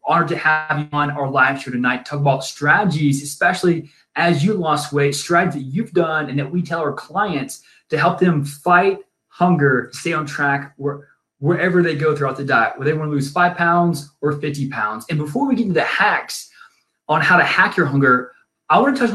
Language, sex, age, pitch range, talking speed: English, male, 20-39, 140-180 Hz, 220 wpm